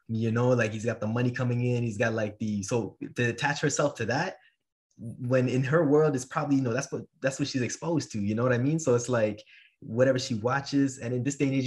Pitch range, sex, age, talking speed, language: 110-135 Hz, male, 20-39, 260 wpm, English